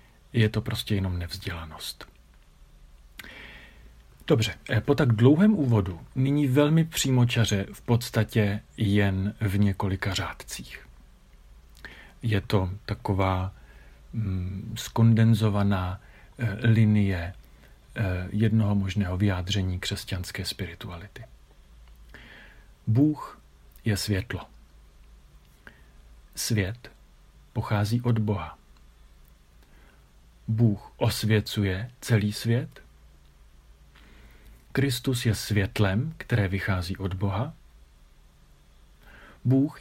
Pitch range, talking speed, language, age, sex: 70-115 Hz, 70 wpm, Czech, 40-59, male